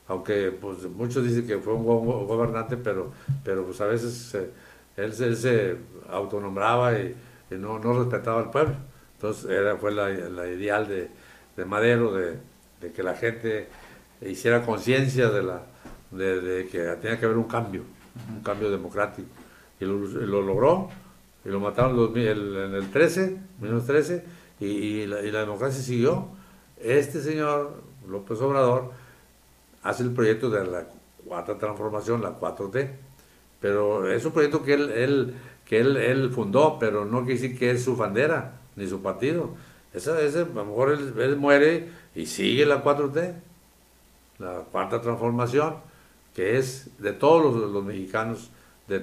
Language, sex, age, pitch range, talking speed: Spanish, male, 60-79, 100-130 Hz, 160 wpm